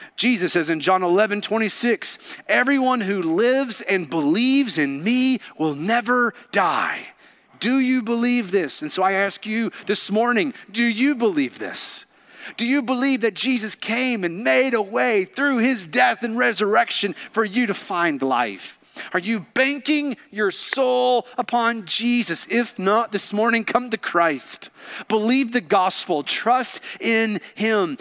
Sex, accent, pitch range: male, American, 205-255 Hz